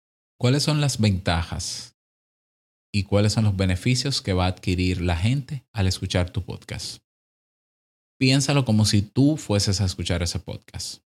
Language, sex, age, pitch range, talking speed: Spanish, male, 20-39, 90-115 Hz, 150 wpm